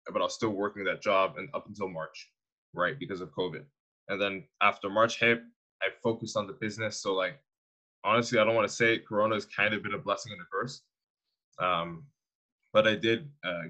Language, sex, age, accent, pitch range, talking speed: English, male, 20-39, American, 95-115 Hz, 215 wpm